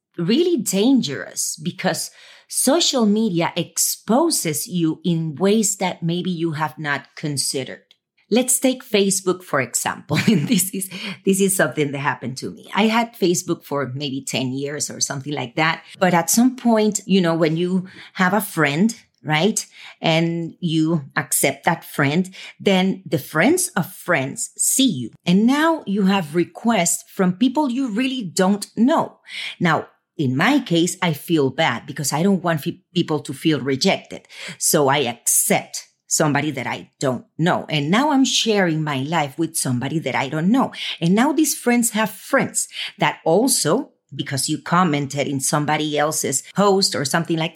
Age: 40-59